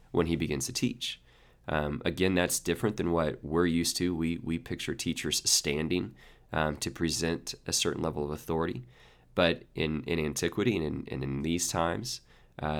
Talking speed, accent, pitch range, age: 180 wpm, American, 75-90 Hz, 20-39